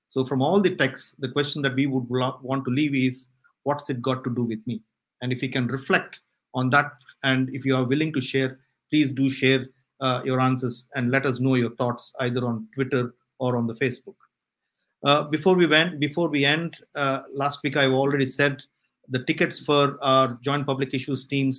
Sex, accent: male, Indian